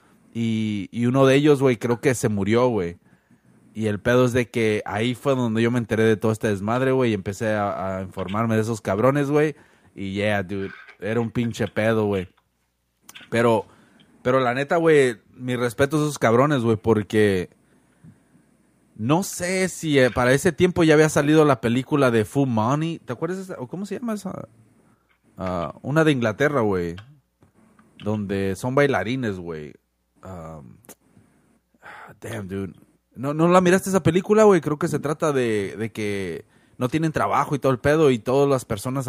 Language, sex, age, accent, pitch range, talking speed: Spanish, male, 30-49, Mexican, 105-145 Hz, 175 wpm